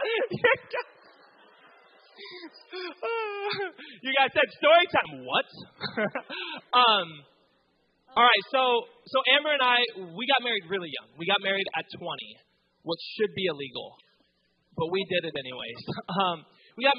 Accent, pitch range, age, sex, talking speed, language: American, 160-210 Hz, 30-49, male, 125 wpm, English